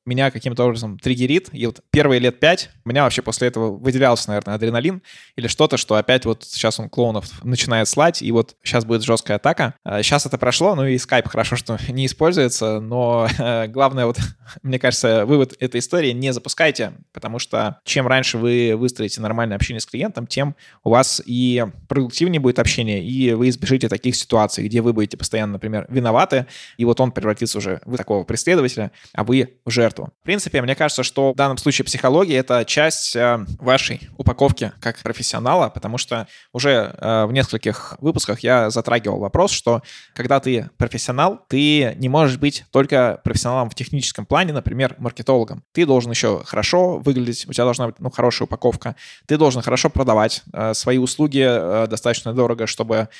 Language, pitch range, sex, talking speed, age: Russian, 115-135 Hz, male, 170 wpm, 20-39